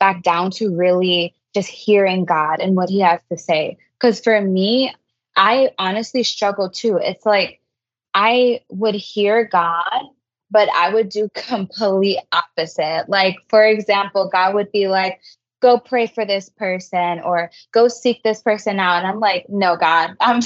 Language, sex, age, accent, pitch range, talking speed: English, female, 20-39, American, 180-215 Hz, 165 wpm